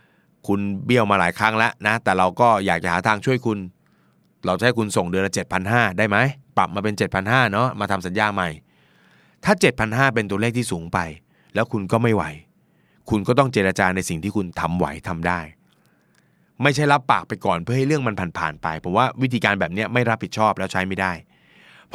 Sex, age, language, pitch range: male, 20-39, Thai, 95-120 Hz